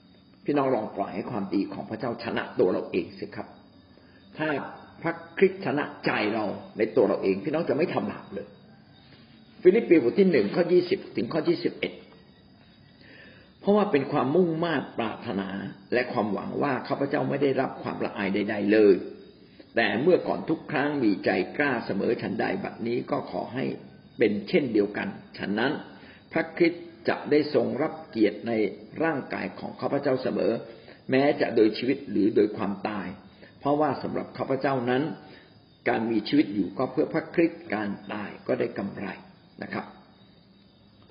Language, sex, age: Thai, male, 50-69